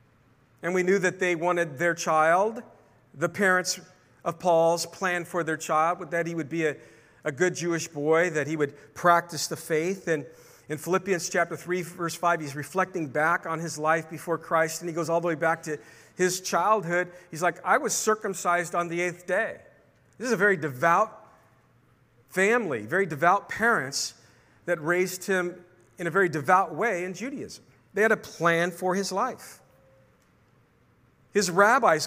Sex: male